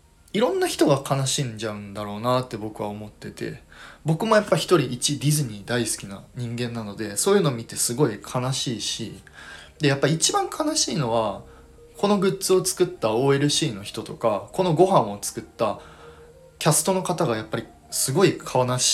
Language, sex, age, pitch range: Japanese, male, 20-39, 105-160 Hz